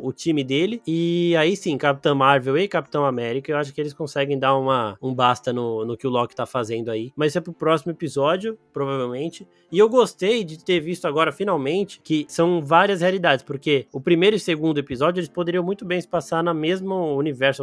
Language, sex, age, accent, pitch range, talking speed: Portuguese, male, 20-39, Brazilian, 140-175 Hz, 210 wpm